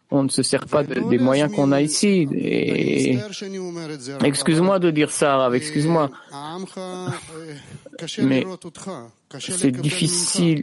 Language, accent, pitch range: English, French, 130-175 Hz